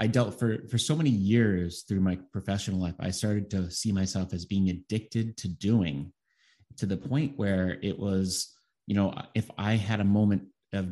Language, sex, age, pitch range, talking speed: English, male, 30-49, 90-110 Hz, 190 wpm